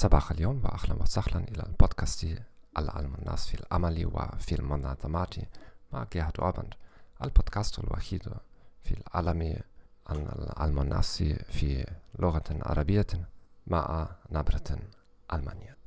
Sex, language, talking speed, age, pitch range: male, English, 100 wpm, 40-59, 80-100 Hz